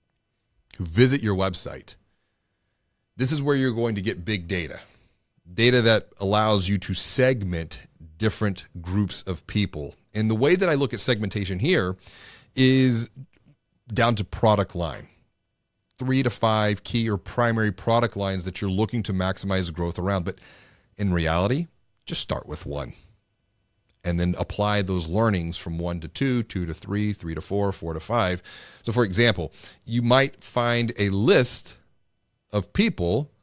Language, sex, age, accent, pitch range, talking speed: English, male, 30-49, American, 95-120 Hz, 155 wpm